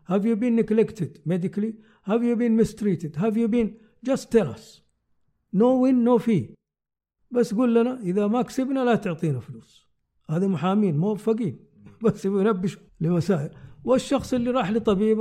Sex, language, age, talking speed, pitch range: male, Arabic, 50-69, 155 wpm, 160-215 Hz